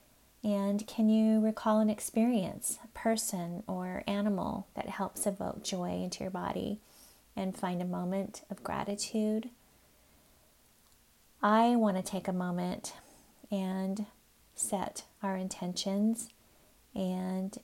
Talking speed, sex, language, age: 115 wpm, female, English, 30-49